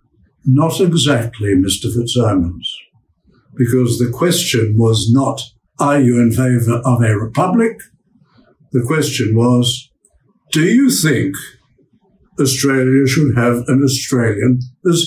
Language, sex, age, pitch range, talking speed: English, male, 60-79, 120-145 Hz, 110 wpm